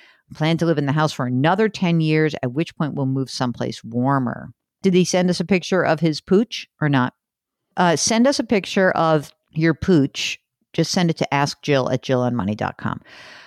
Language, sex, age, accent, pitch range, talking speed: English, female, 50-69, American, 135-195 Hz, 195 wpm